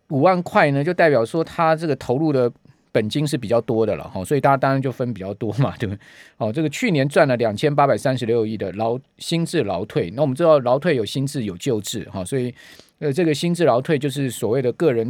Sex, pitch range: male, 120-160 Hz